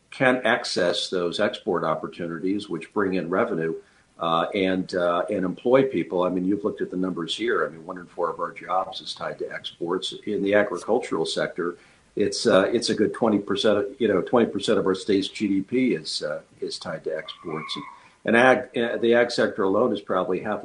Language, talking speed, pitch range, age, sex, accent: English, 205 wpm, 95-120 Hz, 50-69, male, American